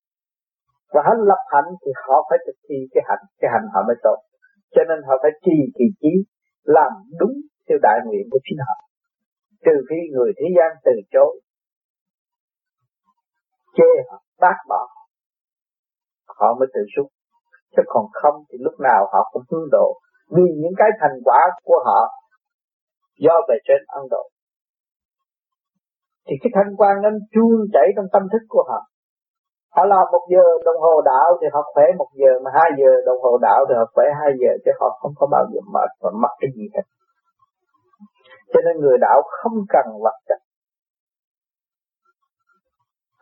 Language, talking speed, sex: Vietnamese, 170 wpm, male